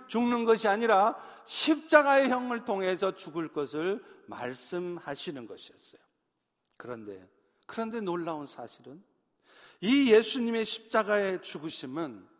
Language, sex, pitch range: Korean, male, 175-245 Hz